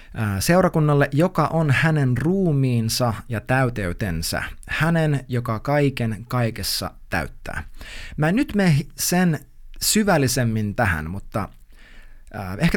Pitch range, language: 110-150 Hz, Finnish